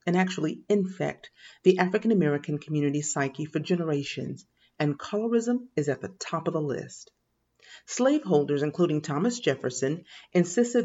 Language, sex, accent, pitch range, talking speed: English, female, American, 150-220 Hz, 125 wpm